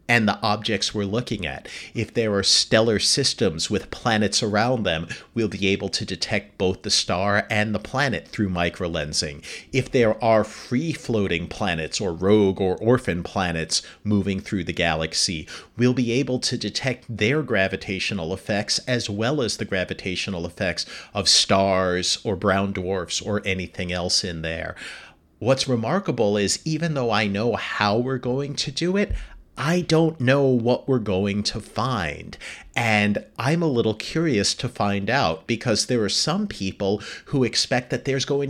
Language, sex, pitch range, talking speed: English, male, 100-125 Hz, 165 wpm